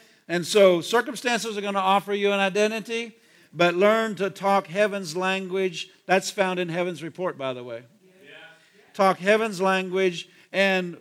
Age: 50-69